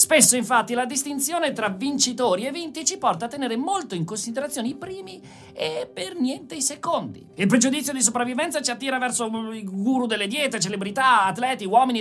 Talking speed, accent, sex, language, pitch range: 180 wpm, native, male, Italian, 205-280 Hz